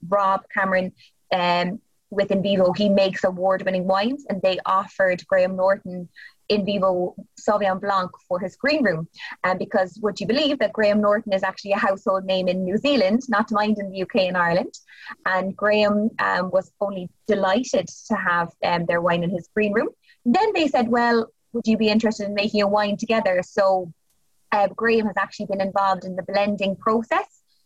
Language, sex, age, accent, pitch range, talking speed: English, female, 20-39, Irish, 185-215 Hz, 185 wpm